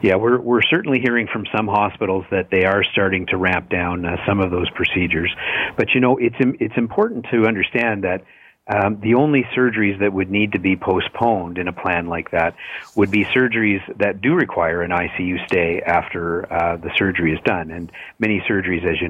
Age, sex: 50-69, male